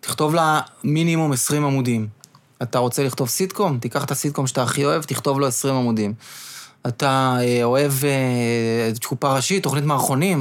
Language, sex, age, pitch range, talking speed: Hebrew, male, 20-39, 130-175 Hz, 145 wpm